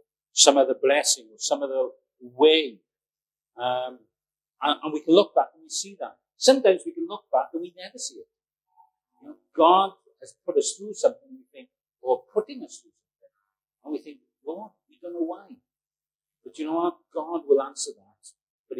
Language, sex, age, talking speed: English, male, 50-69, 200 wpm